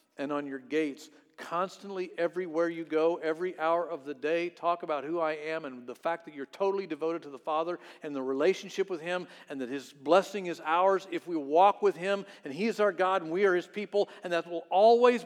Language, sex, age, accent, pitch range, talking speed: English, male, 50-69, American, 145-200 Hz, 230 wpm